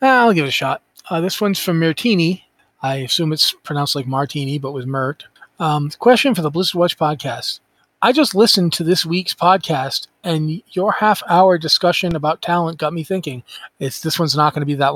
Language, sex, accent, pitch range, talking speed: English, male, American, 155-190 Hz, 200 wpm